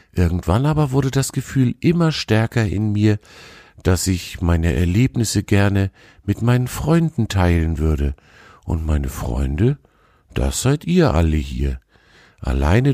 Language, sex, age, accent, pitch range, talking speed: German, male, 50-69, German, 80-115 Hz, 130 wpm